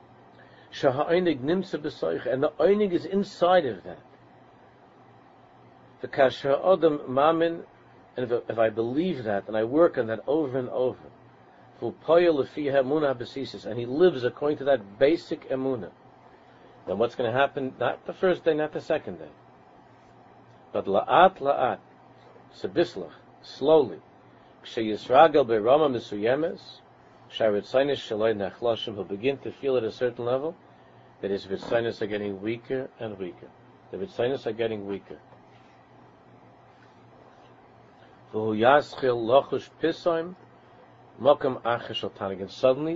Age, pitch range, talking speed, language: 50-69, 115-150 Hz, 95 wpm, English